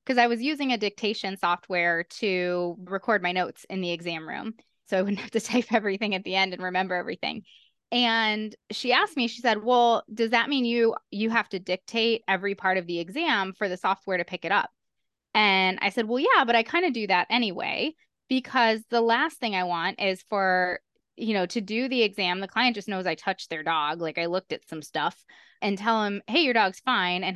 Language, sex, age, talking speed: English, female, 20-39, 225 wpm